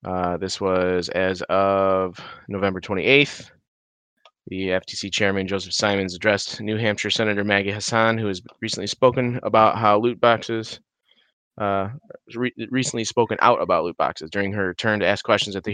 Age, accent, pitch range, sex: 20-39, American, 95-120 Hz, male